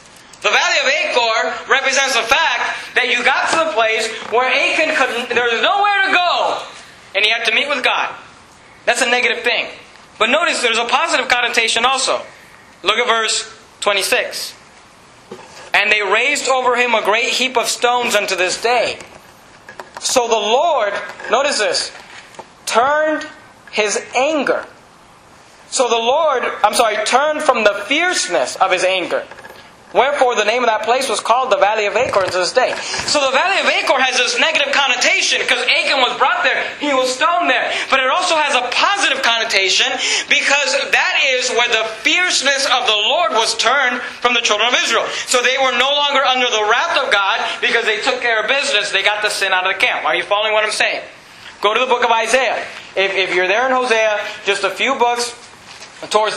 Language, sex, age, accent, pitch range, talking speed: English, male, 40-59, American, 220-270 Hz, 190 wpm